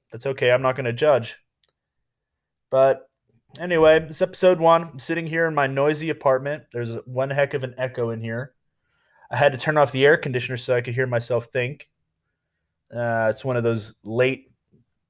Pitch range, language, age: 115-145 Hz, English, 20-39